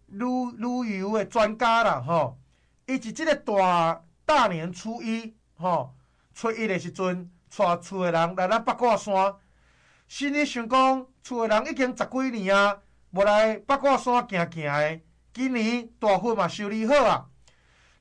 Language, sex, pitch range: Chinese, male, 170-260 Hz